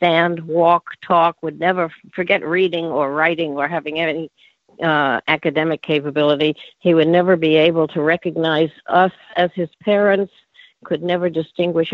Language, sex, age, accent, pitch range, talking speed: English, female, 60-79, American, 165-195 Hz, 145 wpm